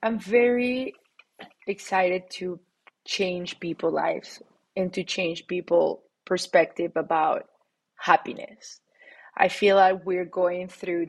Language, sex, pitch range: English, female, 180-205 Hz